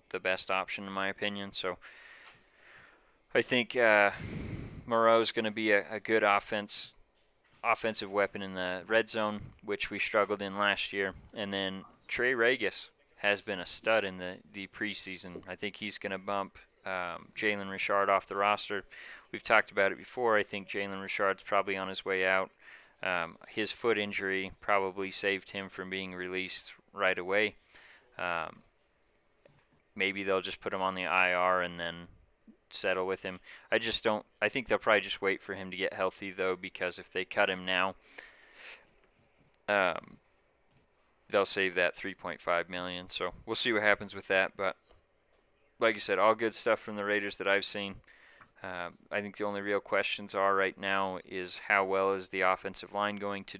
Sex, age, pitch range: male, 30-49, 95-100 Hz